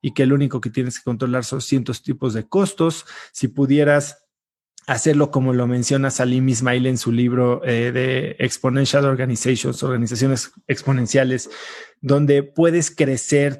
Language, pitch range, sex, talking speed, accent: Spanish, 120-145 Hz, male, 145 wpm, Mexican